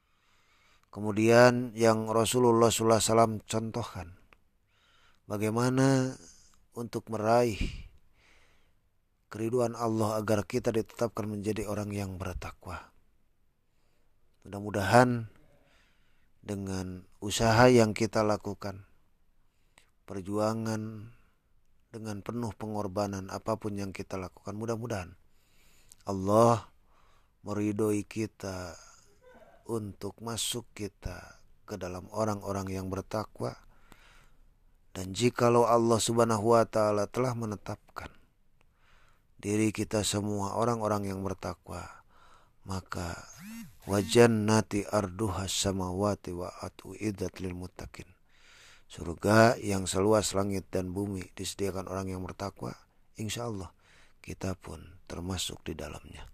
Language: Indonesian